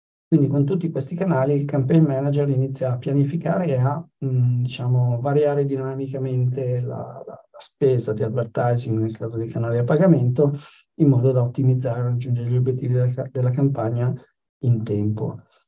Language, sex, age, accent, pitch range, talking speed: Italian, male, 50-69, native, 125-150 Hz, 160 wpm